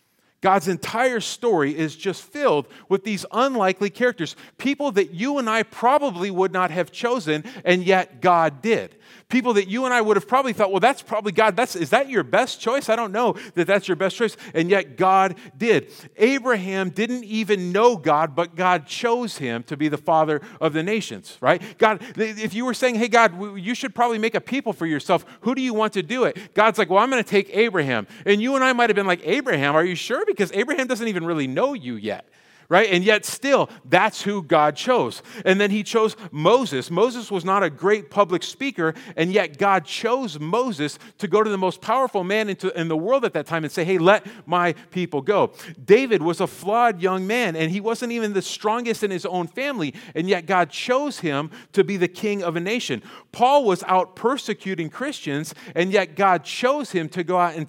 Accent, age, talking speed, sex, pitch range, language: American, 40-59, 215 wpm, male, 175-230 Hz, English